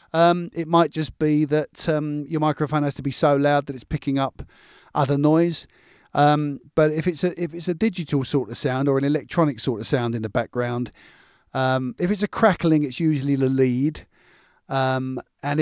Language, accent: English, British